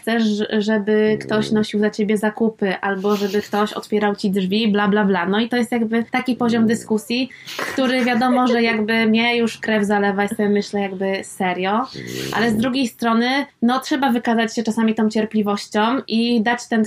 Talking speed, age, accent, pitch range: 180 wpm, 20-39, native, 205-230 Hz